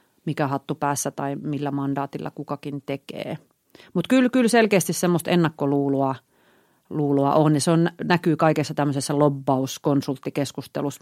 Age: 40-59